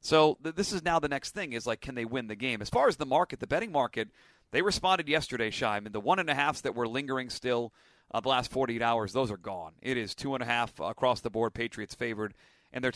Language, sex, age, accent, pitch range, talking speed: English, male, 40-59, American, 115-140 Hz, 260 wpm